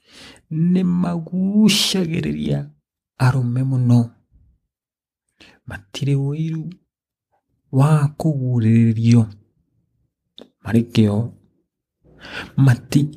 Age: 50-69